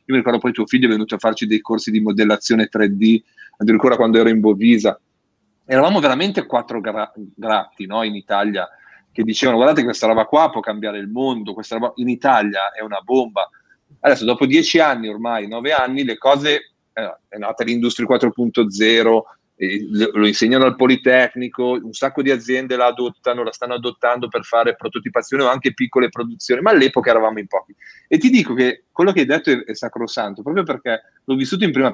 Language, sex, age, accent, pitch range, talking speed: Italian, male, 30-49, native, 110-135 Hz, 190 wpm